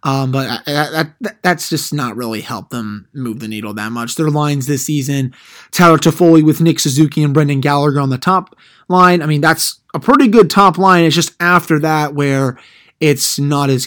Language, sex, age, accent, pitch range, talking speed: English, male, 20-39, American, 130-155 Hz, 210 wpm